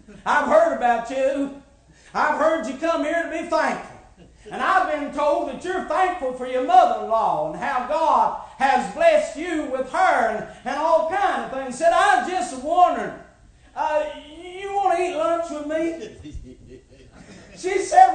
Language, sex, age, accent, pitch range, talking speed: English, male, 50-69, American, 280-360 Hz, 165 wpm